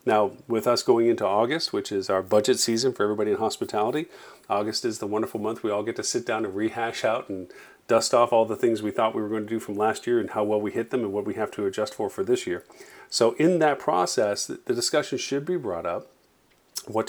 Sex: male